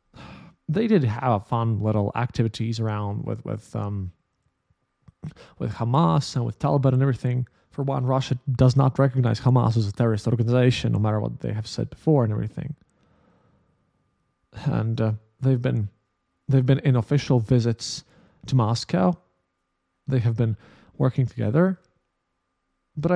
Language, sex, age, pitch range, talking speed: English, male, 20-39, 110-140 Hz, 145 wpm